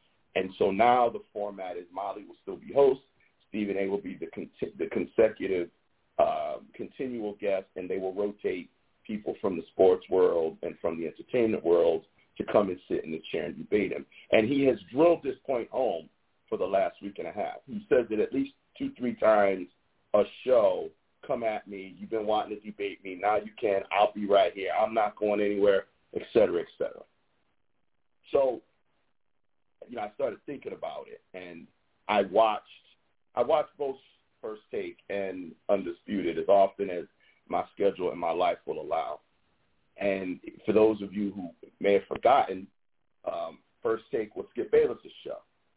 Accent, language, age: American, English, 50-69